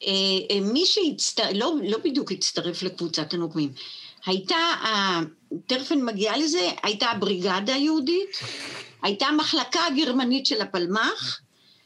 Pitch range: 195-315 Hz